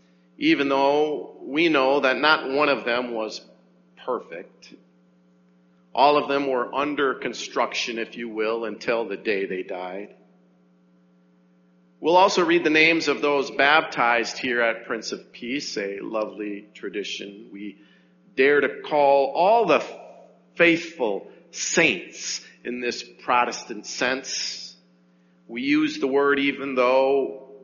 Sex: male